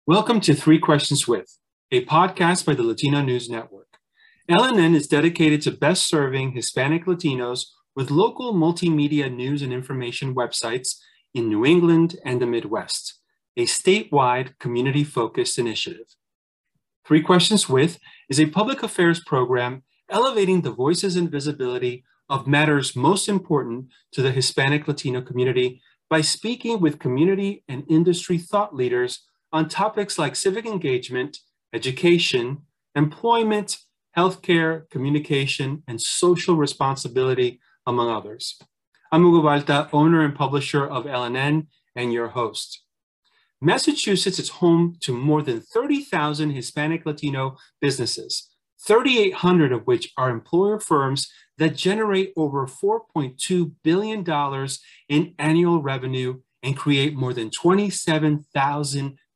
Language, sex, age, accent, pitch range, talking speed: English, male, 30-49, American, 135-180 Hz, 120 wpm